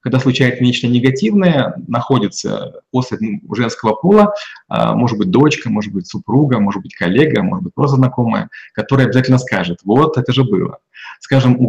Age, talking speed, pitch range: 20-39, 155 wpm, 110-130 Hz